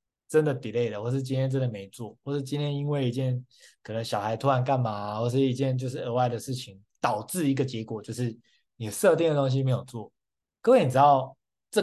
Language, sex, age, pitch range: Chinese, male, 20-39, 115-140 Hz